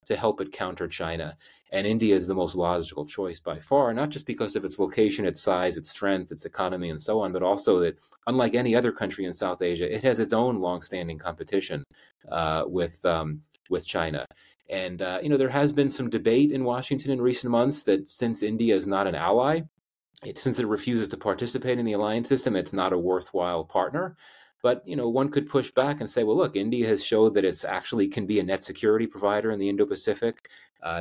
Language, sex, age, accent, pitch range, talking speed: English, male, 30-49, American, 90-125 Hz, 215 wpm